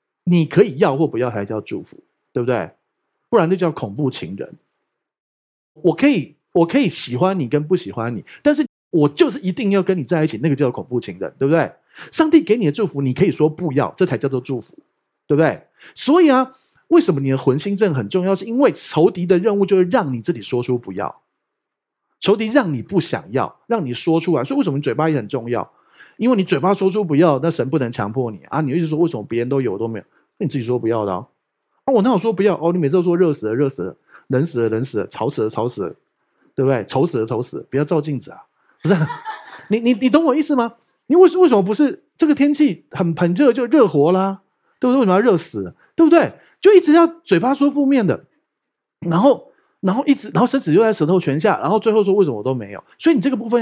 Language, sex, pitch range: Chinese, male, 140-230 Hz